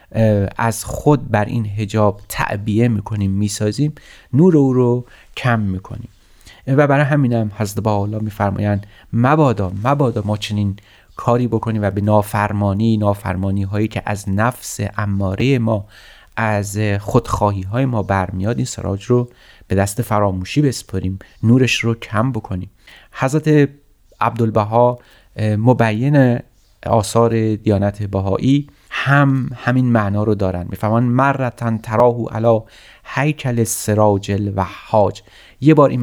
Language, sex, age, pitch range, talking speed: Persian, male, 30-49, 100-120 Hz, 125 wpm